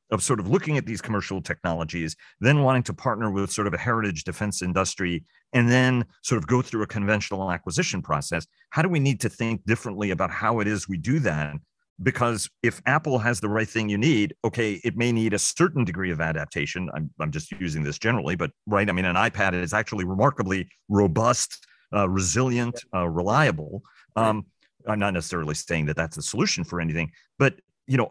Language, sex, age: English, male, 40-59